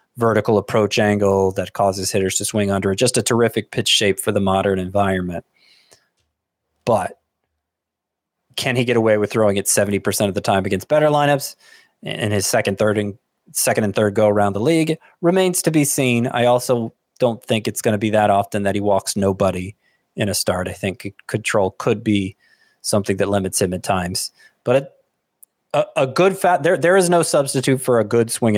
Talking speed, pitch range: 195 wpm, 100-130 Hz